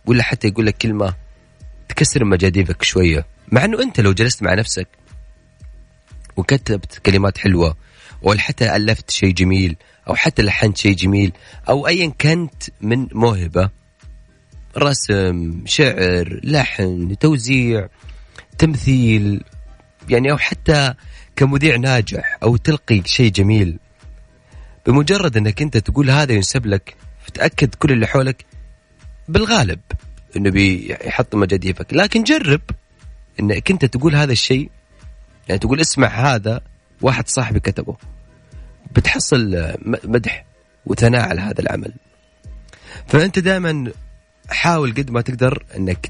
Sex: male